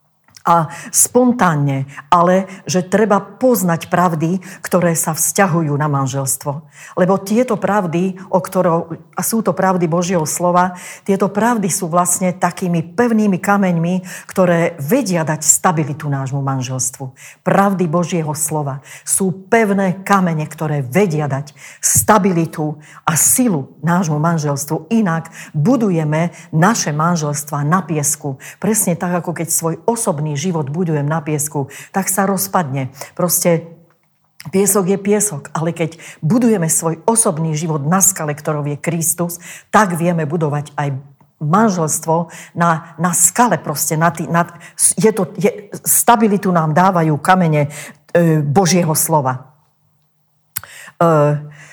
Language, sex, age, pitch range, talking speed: Slovak, female, 40-59, 155-190 Hz, 125 wpm